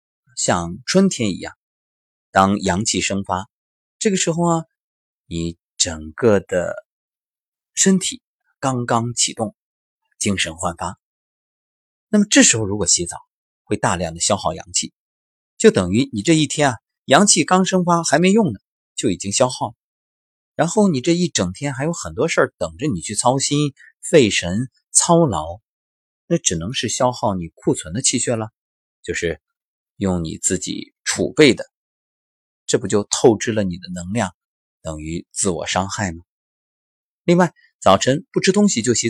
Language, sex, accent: Chinese, male, native